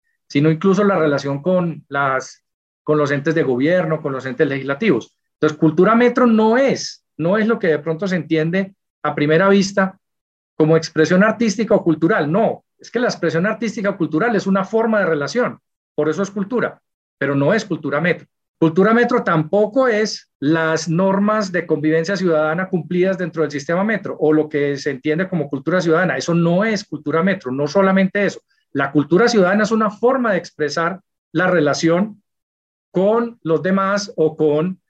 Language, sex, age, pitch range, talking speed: Spanish, male, 40-59, 160-205 Hz, 175 wpm